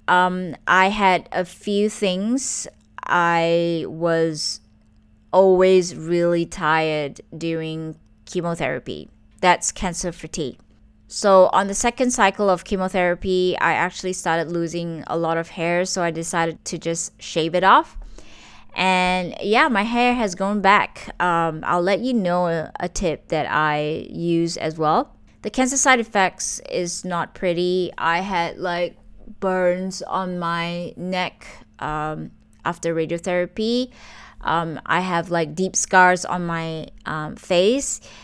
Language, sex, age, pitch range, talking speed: English, female, 20-39, 170-195 Hz, 135 wpm